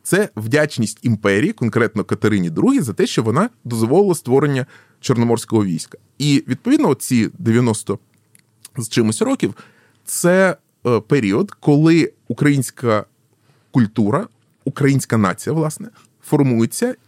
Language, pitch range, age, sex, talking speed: Ukrainian, 110-145 Hz, 20-39, male, 105 wpm